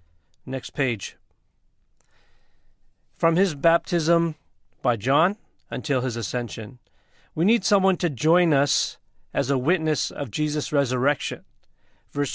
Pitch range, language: 120-160 Hz, English